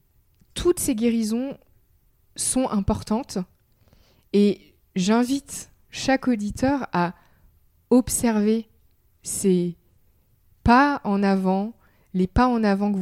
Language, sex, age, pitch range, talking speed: French, female, 20-39, 180-240 Hz, 90 wpm